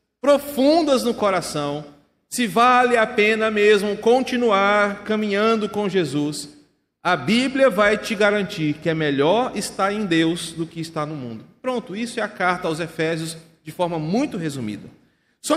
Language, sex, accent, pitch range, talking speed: Portuguese, male, Brazilian, 170-220 Hz, 155 wpm